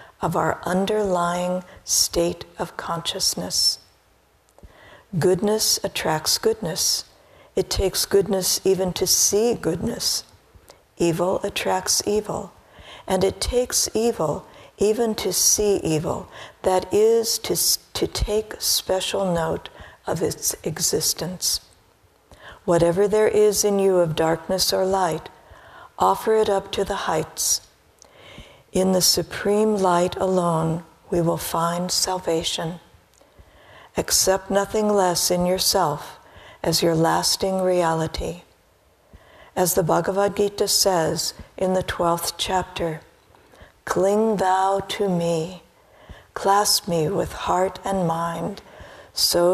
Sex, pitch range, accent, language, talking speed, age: female, 170-200 Hz, American, English, 110 wpm, 60-79